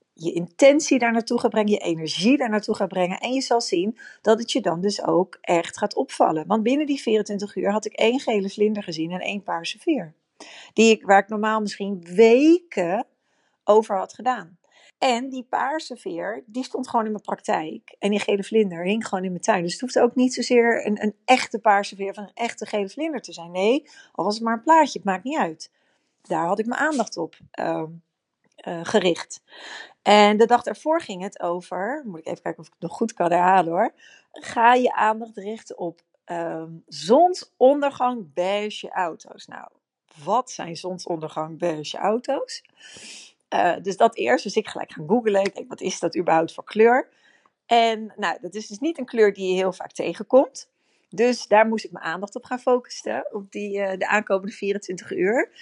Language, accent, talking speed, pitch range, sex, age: Dutch, Dutch, 200 wpm, 190-245 Hz, female, 40-59